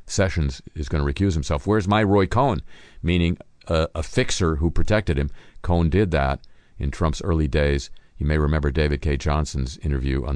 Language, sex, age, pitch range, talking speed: English, male, 50-69, 75-95 Hz, 185 wpm